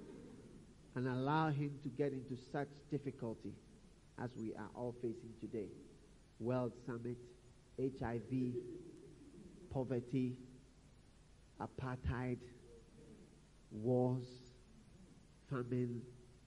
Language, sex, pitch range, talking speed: English, male, 120-155 Hz, 75 wpm